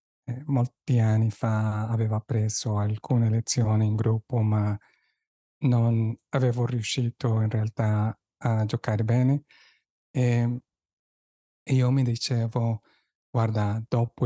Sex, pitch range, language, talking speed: male, 110-130 Hz, Italian, 105 wpm